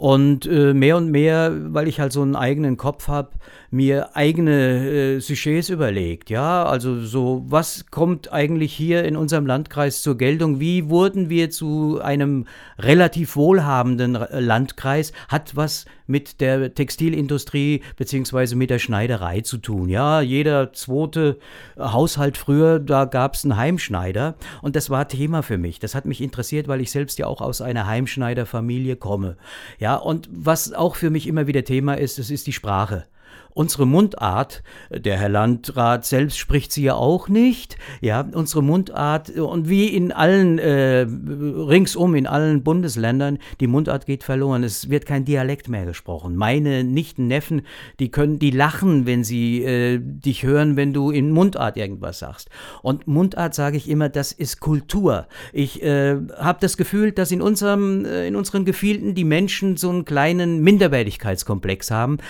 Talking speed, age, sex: 160 wpm, 50-69, male